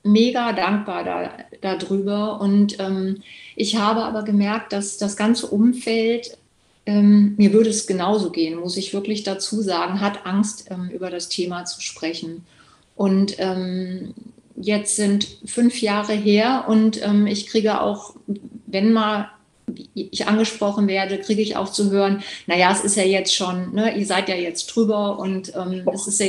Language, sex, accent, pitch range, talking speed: German, female, German, 190-215 Hz, 160 wpm